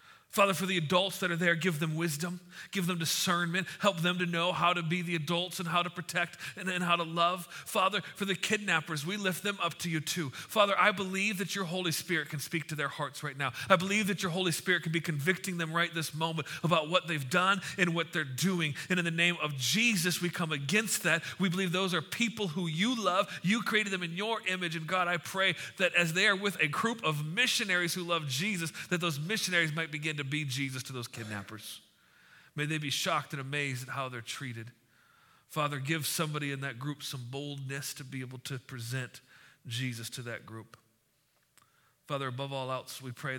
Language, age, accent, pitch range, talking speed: English, 40-59, American, 130-180 Hz, 225 wpm